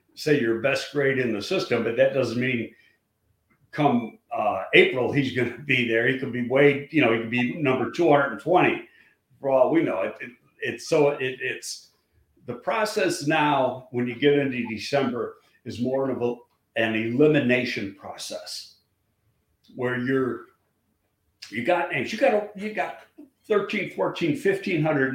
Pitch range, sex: 125-150 Hz, male